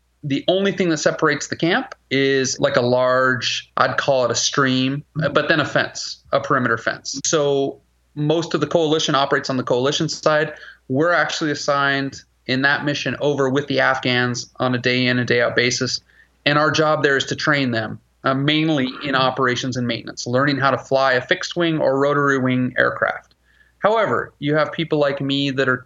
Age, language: 30-49, English